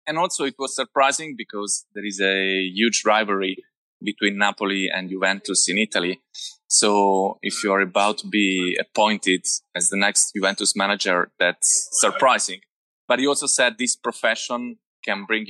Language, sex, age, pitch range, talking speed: English, male, 20-39, 100-125 Hz, 155 wpm